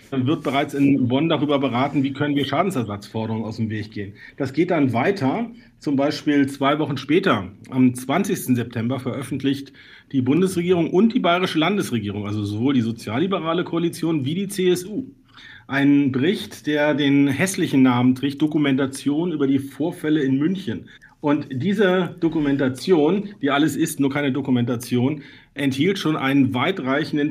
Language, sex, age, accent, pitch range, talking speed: German, male, 50-69, German, 130-155 Hz, 150 wpm